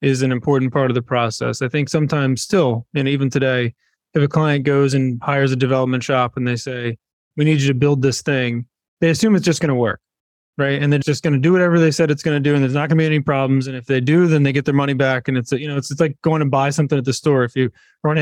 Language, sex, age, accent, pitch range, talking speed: English, male, 20-39, American, 130-155 Hz, 285 wpm